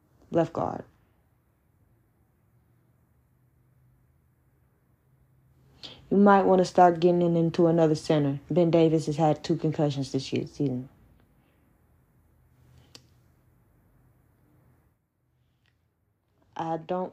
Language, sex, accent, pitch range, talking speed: English, female, American, 125-215 Hz, 75 wpm